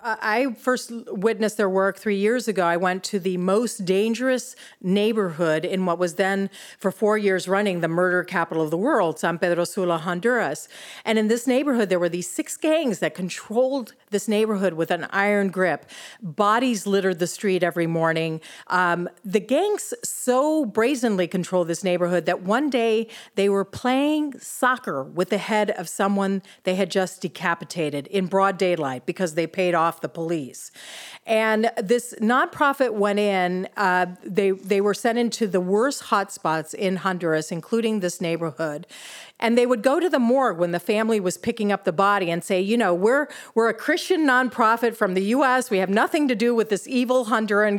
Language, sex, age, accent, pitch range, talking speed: English, female, 40-59, American, 185-235 Hz, 180 wpm